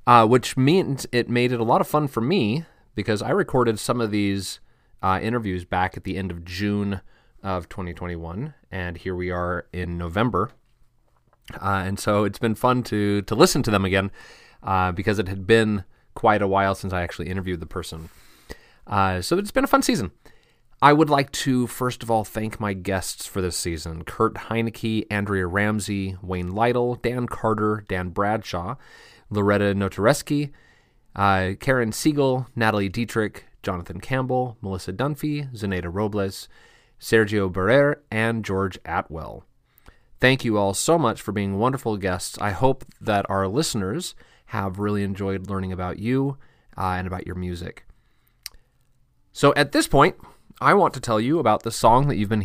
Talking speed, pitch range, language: 170 wpm, 95-120 Hz, English